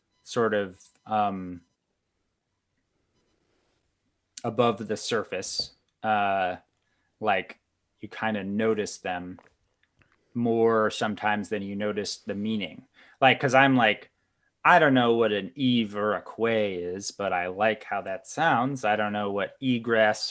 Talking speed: 135 wpm